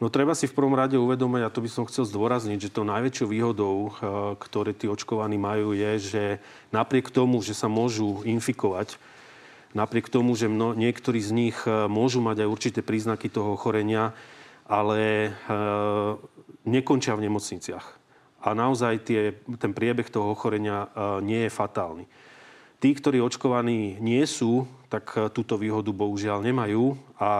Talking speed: 145 wpm